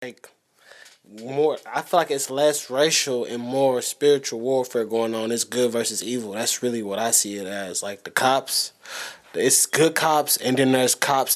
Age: 20-39